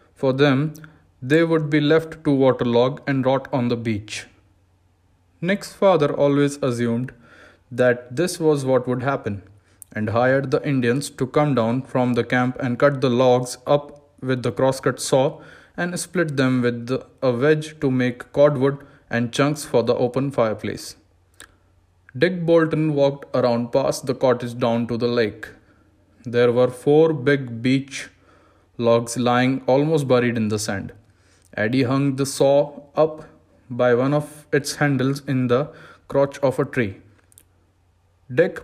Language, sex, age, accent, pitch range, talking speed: Hindi, male, 20-39, native, 115-145 Hz, 150 wpm